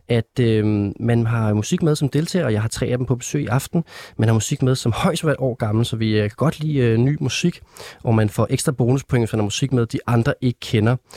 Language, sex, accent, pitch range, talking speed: Danish, male, native, 115-145 Hz, 275 wpm